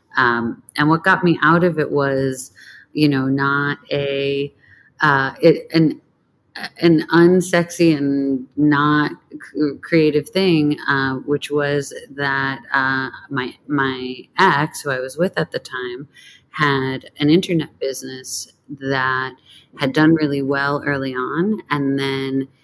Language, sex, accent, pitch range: English, female, American, 130-150 Hz